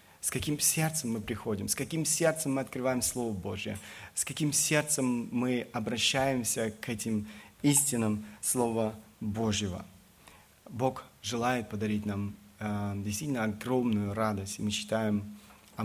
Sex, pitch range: male, 105-130 Hz